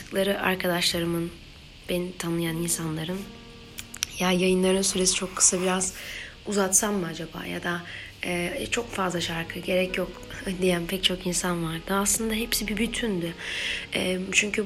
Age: 30-49